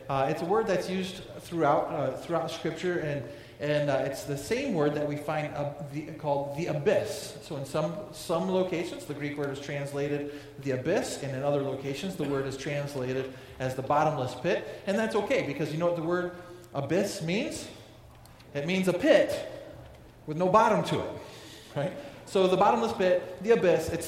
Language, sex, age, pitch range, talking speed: English, male, 40-59, 140-180 Hz, 190 wpm